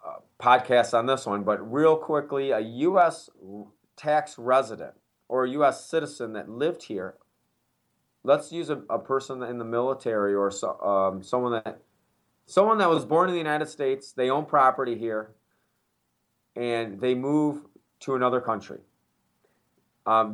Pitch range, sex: 120-150 Hz, male